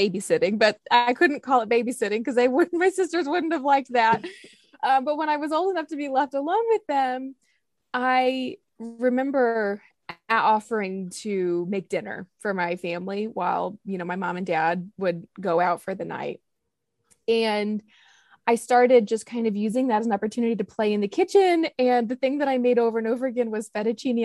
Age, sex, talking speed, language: 20-39, female, 195 wpm, English